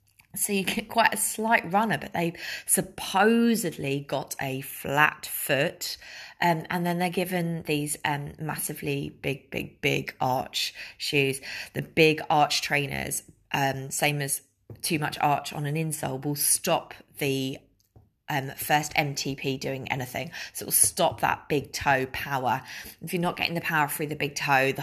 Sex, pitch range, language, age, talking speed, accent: female, 145-185 Hz, English, 20-39, 160 wpm, British